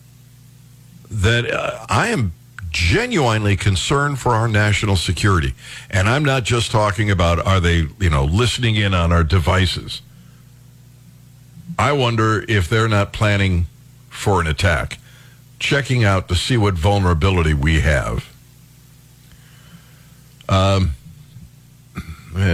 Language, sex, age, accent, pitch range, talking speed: English, male, 60-79, American, 90-130 Hz, 115 wpm